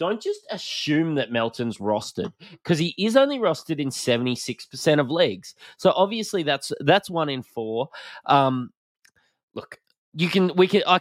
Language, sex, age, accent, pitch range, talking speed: English, male, 20-39, Australian, 115-160 Hz, 170 wpm